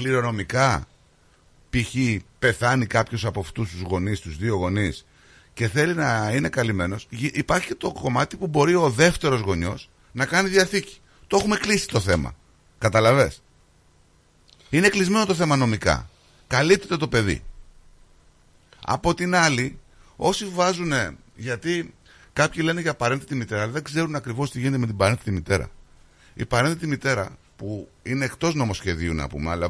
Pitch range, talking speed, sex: 90-135 Hz, 150 wpm, male